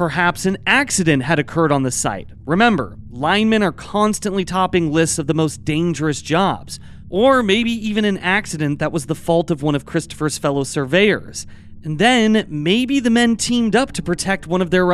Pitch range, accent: 150-200 Hz, American